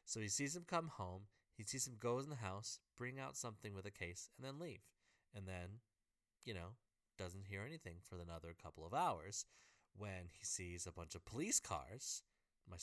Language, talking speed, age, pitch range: English, 200 wpm, 30-49, 95-120 Hz